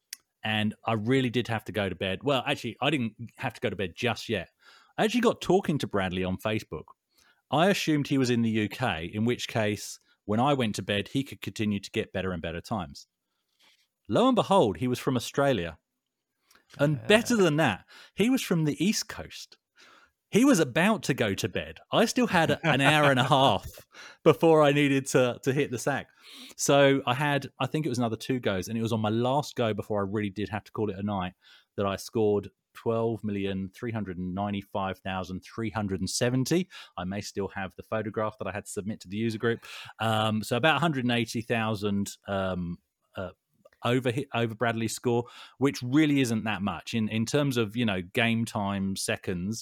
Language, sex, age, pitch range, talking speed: English, male, 30-49, 100-135 Hz, 195 wpm